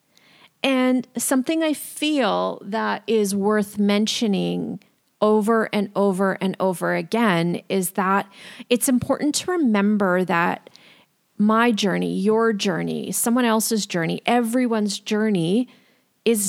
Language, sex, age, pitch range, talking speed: English, female, 30-49, 185-230 Hz, 115 wpm